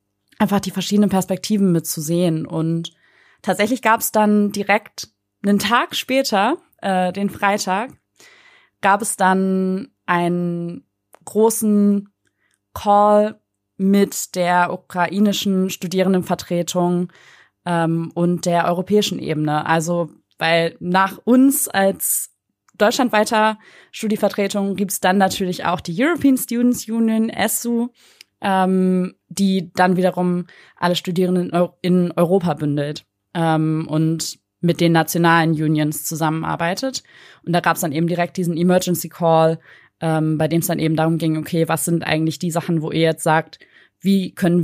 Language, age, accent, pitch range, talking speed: German, 20-39, German, 165-195 Hz, 130 wpm